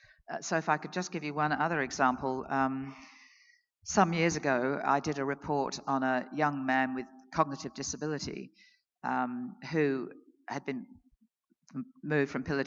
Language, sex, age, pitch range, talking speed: English, female, 50-69, 130-155 Hz, 150 wpm